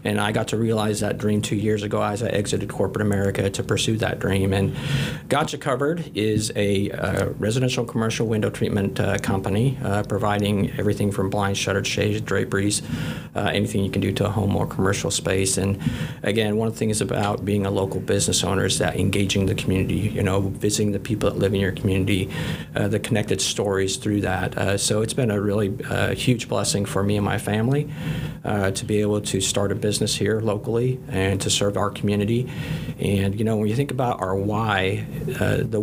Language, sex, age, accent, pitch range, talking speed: English, male, 50-69, American, 100-115 Hz, 205 wpm